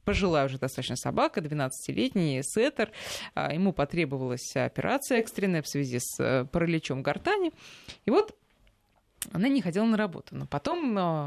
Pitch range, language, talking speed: 145-205 Hz, Russian, 135 wpm